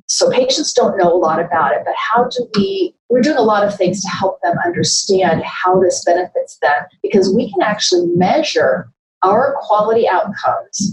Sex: female